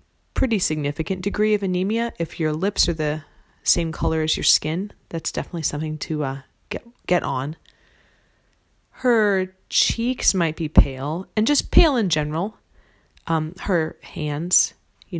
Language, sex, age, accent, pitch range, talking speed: English, female, 30-49, American, 160-210 Hz, 145 wpm